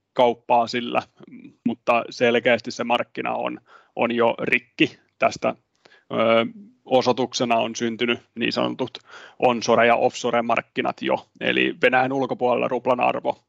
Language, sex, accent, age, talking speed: Finnish, male, native, 30-49, 120 wpm